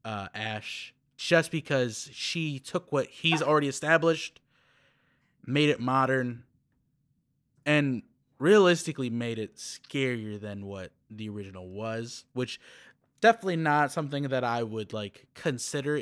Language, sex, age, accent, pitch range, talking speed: English, male, 20-39, American, 120-150 Hz, 120 wpm